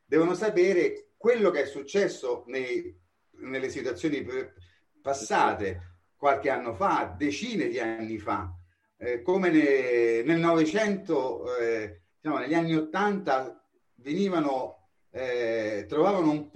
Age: 30-49